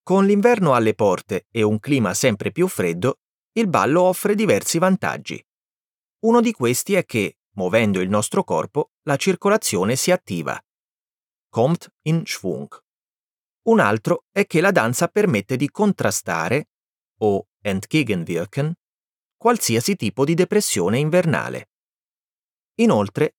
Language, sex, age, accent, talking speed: Italian, male, 30-49, native, 125 wpm